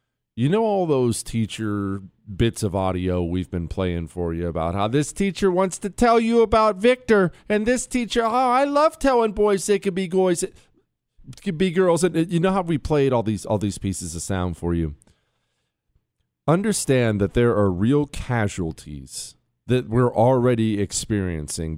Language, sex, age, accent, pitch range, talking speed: English, male, 40-59, American, 110-185 Hz, 175 wpm